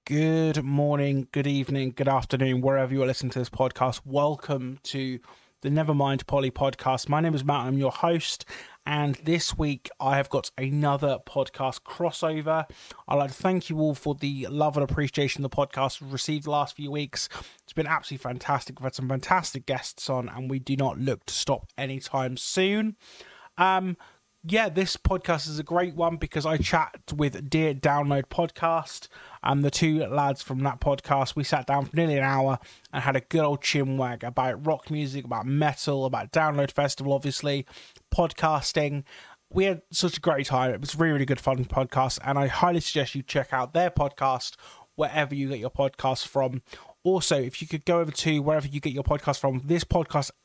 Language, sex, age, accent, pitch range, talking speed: English, male, 20-39, British, 135-160 Hz, 190 wpm